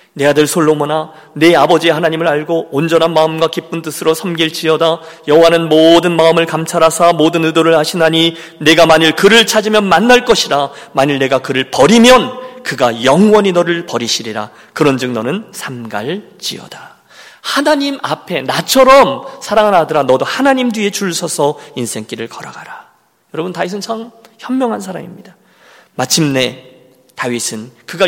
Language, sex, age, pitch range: Korean, male, 40-59, 145-210 Hz